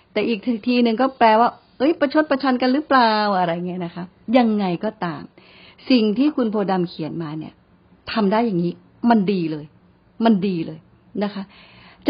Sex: female